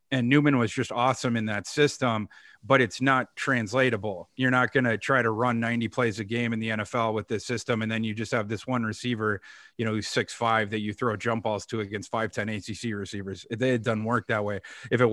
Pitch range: 110-130 Hz